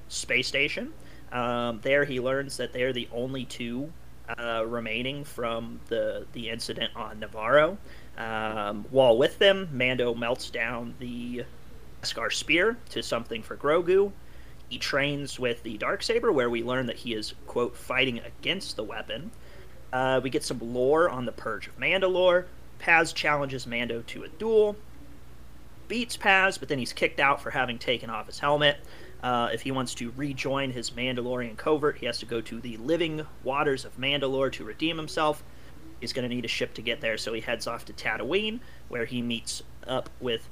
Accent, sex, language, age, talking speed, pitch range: American, male, English, 30-49, 180 wpm, 120-150 Hz